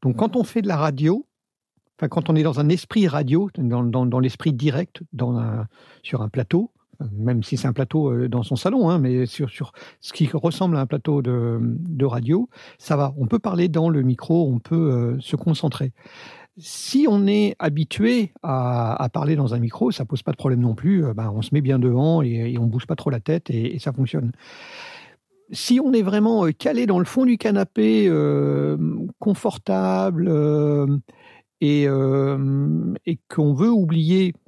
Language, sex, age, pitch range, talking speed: French, male, 50-69, 135-190 Hz, 200 wpm